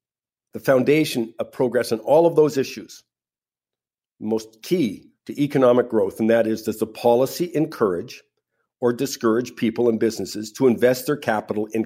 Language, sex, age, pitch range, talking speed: English, male, 50-69, 115-140 Hz, 160 wpm